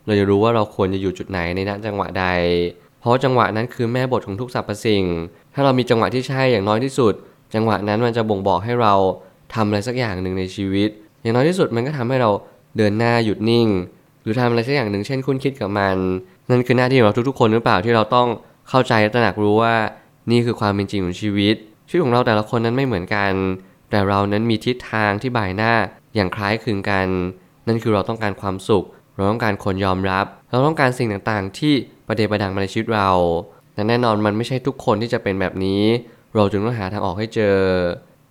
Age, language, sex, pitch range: 20-39, Thai, male, 100-120 Hz